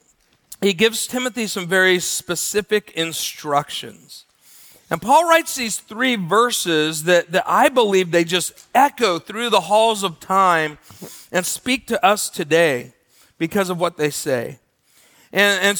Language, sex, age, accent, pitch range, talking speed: English, male, 40-59, American, 160-205 Hz, 140 wpm